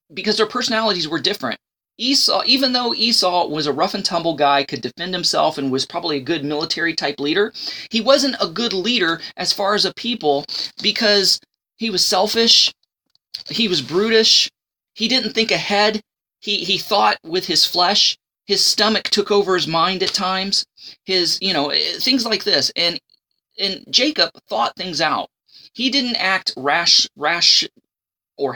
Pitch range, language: 160-220 Hz, English